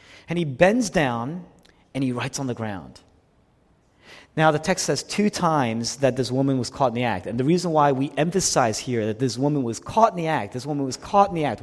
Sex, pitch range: male, 130-190 Hz